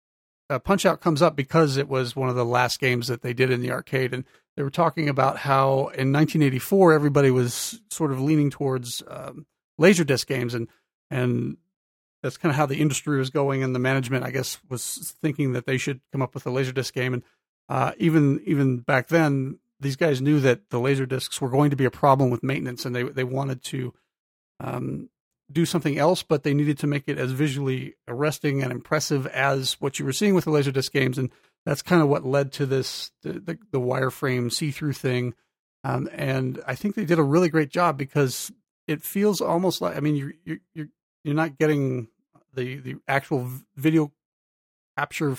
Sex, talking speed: male, 205 wpm